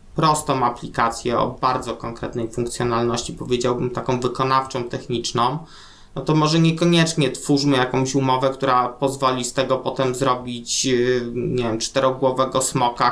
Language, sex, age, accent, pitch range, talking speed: Polish, male, 20-39, native, 130-150 Hz, 125 wpm